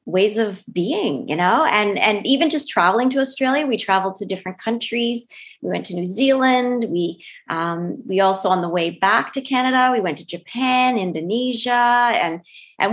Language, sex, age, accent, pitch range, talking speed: English, female, 30-49, American, 185-245 Hz, 180 wpm